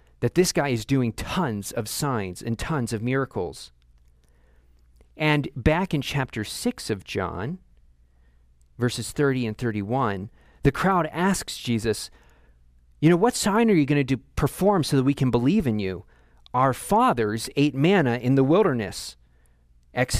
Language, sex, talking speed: English, male, 155 wpm